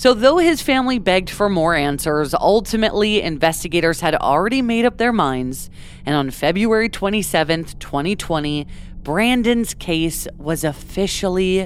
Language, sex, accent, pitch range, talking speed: English, female, American, 150-205 Hz, 130 wpm